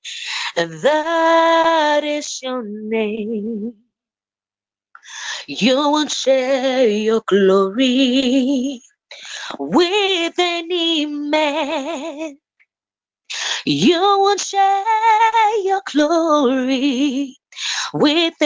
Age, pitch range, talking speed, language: 20-39, 255-335 Hz, 60 wpm, English